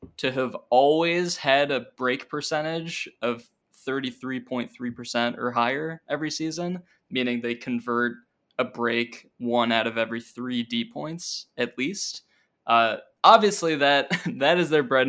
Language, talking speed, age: English, 150 wpm, 20-39